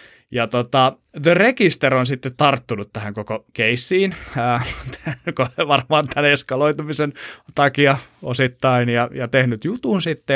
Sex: male